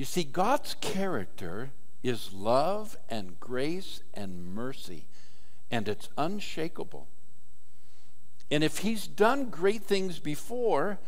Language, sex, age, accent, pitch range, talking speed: English, male, 60-79, American, 95-155 Hz, 110 wpm